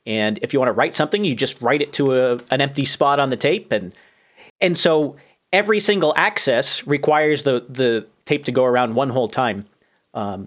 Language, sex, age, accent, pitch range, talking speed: English, male, 40-59, American, 120-155 Hz, 205 wpm